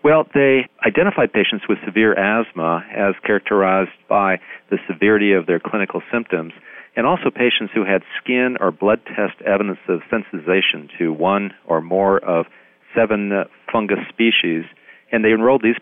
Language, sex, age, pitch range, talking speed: English, male, 50-69, 90-110 Hz, 150 wpm